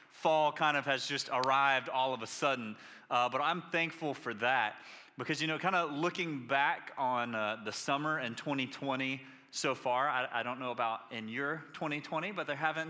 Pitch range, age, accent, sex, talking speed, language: 120-150 Hz, 30-49, American, male, 195 wpm, English